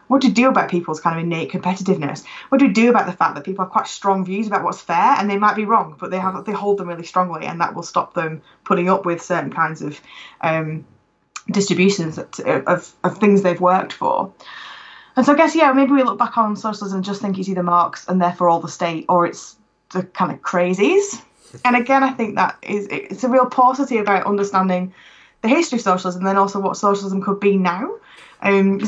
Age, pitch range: 20-39, 185-225 Hz